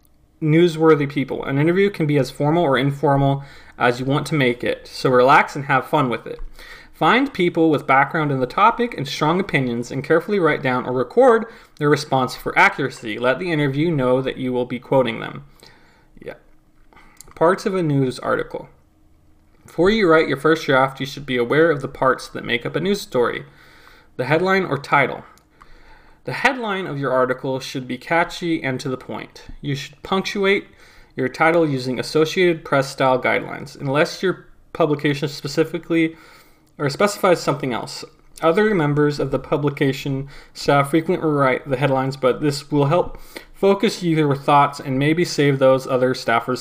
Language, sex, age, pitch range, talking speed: English, male, 20-39, 130-165 Hz, 175 wpm